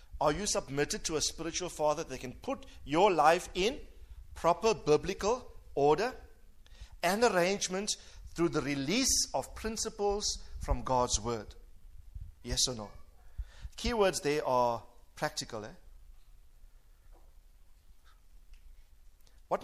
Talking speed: 105 wpm